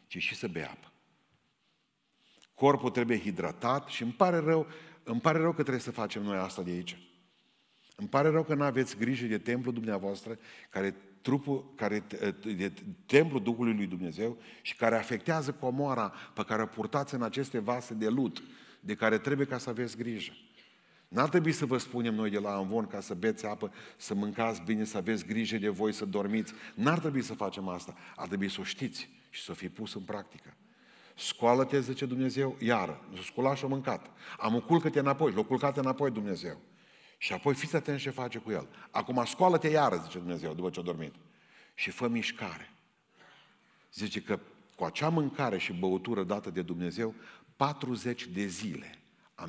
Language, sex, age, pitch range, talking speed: Romanian, male, 40-59, 105-140 Hz, 180 wpm